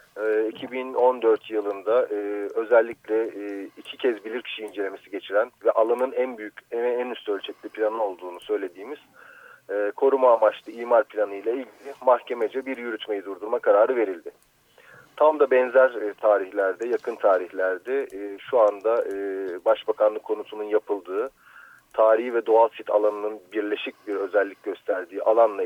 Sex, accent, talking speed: male, native, 120 wpm